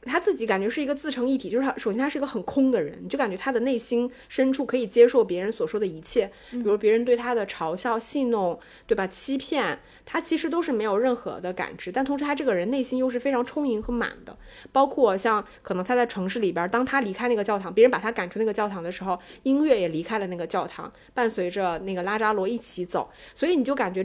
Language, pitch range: Chinese, 200-270 Hz